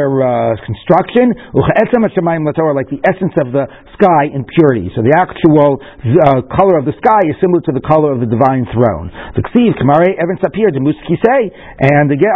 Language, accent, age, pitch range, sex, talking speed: English, American, 60-79, 135-170 Hz, male, 150 wpm